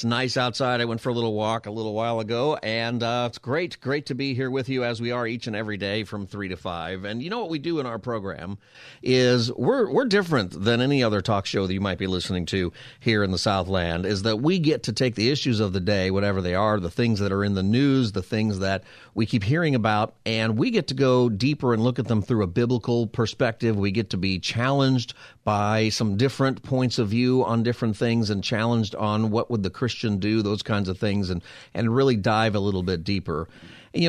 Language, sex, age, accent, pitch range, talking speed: English, male, 40-59, American, 100-125 Hz, 245 wpm